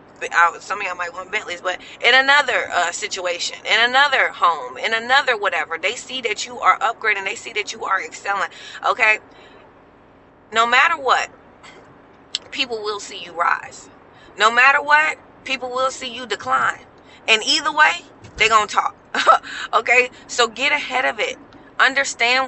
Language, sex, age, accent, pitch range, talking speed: English, female, 20-39, American, 205-270 Hz, 165 wpm